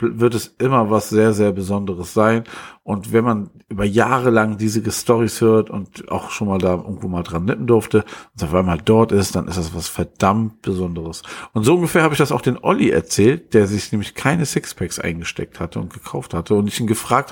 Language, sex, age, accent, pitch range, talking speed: German, male, 50-69, German, 105-120 Hz, 215 wpm